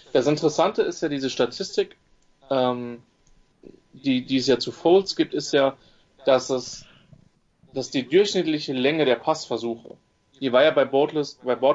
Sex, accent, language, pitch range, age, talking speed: male, German, English, 125-140 Hz, 30-49, 155 wpm